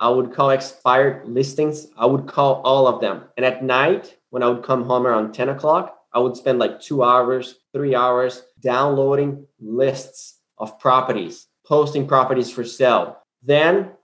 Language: English